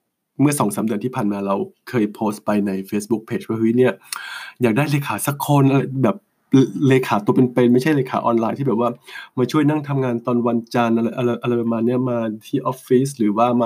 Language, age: English, 20-39